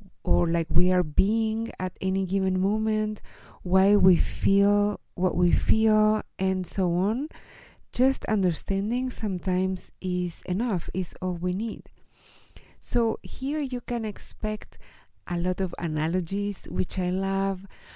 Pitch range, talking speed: 180-220 Hz, 130 wpm